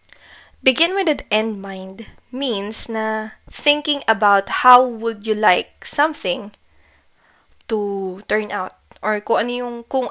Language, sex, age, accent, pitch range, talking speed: Filipino, female, 20-39, native, 205-260 Hz, 130 wpm